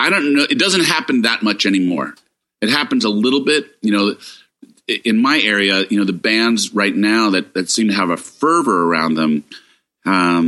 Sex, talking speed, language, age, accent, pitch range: male, 200 wpm, English, 40-59, American, 90-125 Hz